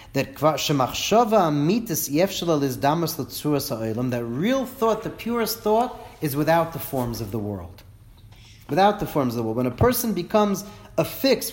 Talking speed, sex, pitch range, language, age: 130 wpm, male, 125-200 Hz, English, 40-59